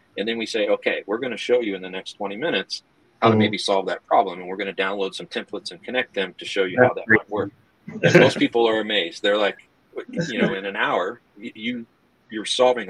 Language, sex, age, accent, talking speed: English, male, 40-59, American, 240 wpm